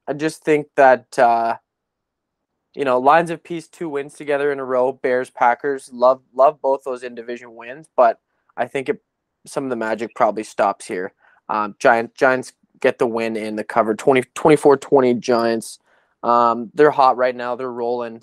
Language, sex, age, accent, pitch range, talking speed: English, male, 20-39, American, 115-145 Hz, 175 wpm